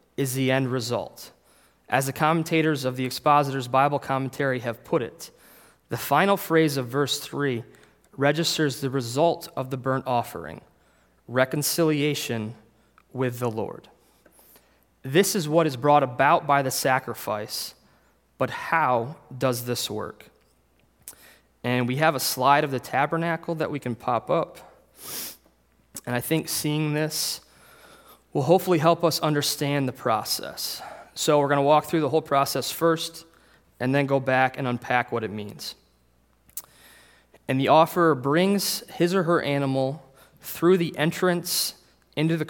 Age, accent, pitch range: 20-39, American, 125-155 Hz